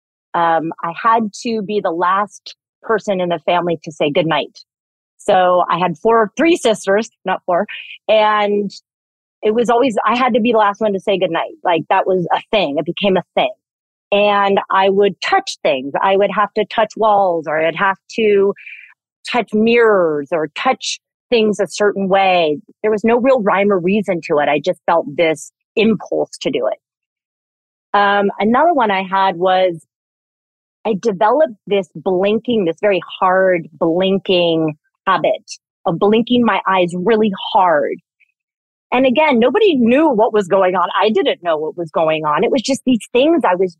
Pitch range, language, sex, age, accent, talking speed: 180-225 Hz, English, female, 30-49, American, 175 wpm